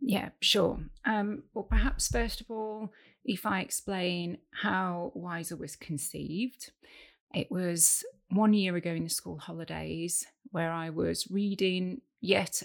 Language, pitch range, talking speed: English, 165-200 Hz, 140 wpm